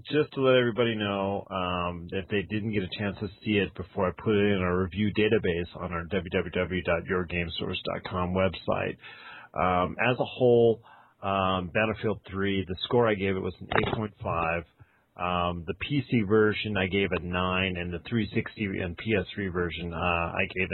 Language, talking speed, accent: English, 170 wpm, American